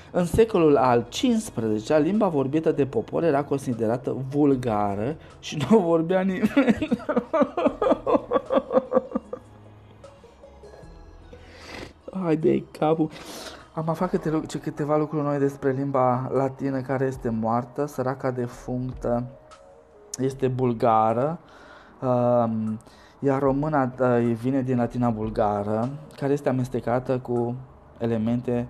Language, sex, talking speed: Romanian, male, 90 wpm